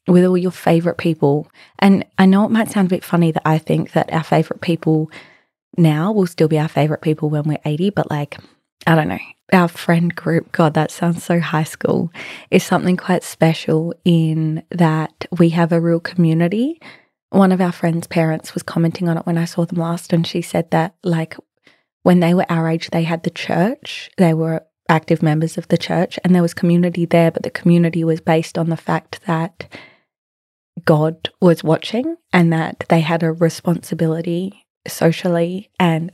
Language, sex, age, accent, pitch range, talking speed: English, female, 20-39, Australian, 160-180 Hz, 195 wpm